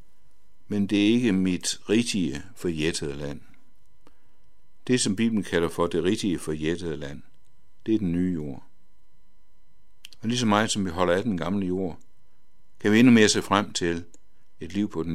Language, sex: Danish, male